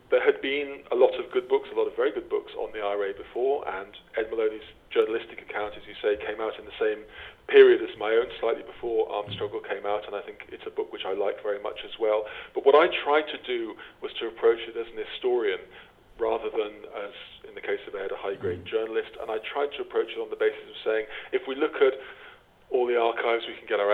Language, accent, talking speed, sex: English, British, 255 wpm, male